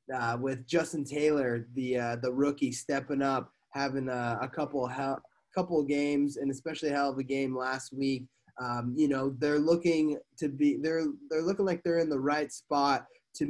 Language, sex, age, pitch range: English, male, 20-39, 130-150 Hz